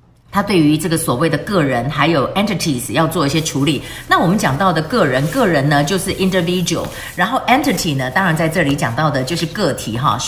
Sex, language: female, Chinese